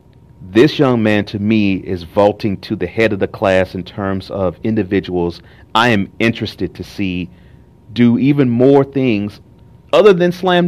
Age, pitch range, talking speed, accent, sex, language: 40-59, 95-130 Hz, 165 wpm, American, male, English